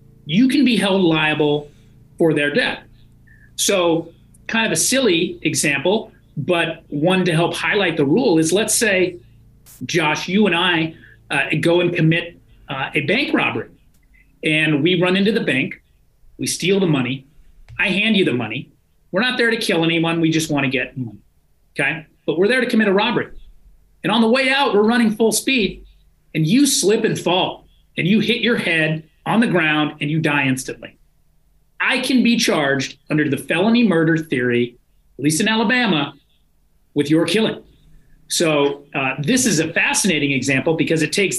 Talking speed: 175 wpm